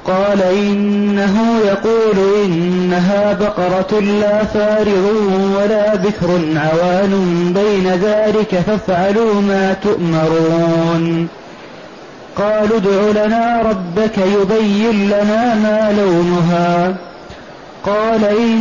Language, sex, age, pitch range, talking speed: Arabic, male, 30-49, 190-225 Hz, 75 wpm